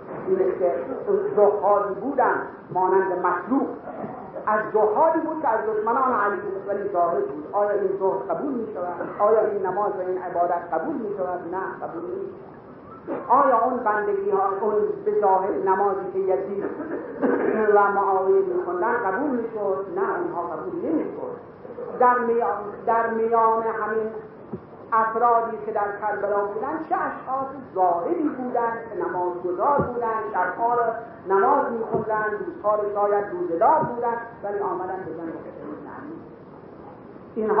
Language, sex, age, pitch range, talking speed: Persian, male, 50-69, 195-265 Hz, 125 wpm